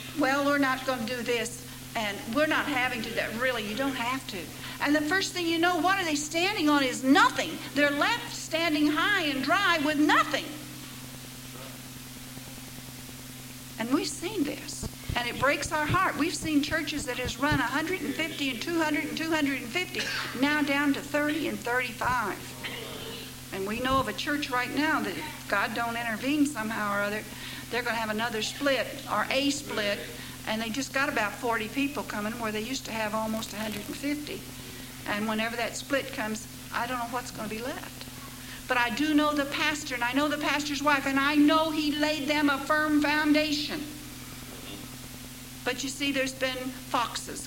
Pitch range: 215-295 Hz